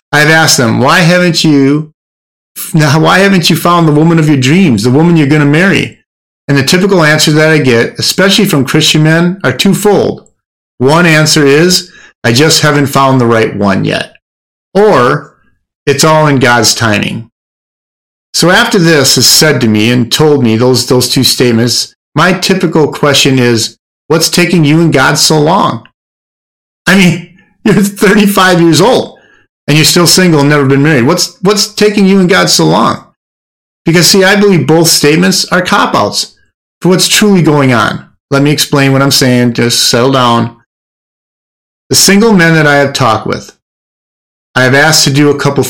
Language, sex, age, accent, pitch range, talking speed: English, male, 40-59, American, 125-175 Hz, 180 wpm